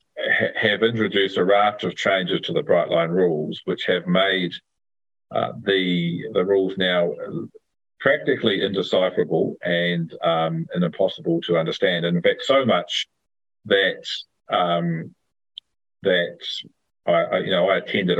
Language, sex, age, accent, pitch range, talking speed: English, male, 40-59, Australian, 85-105 Hz, 130 wpm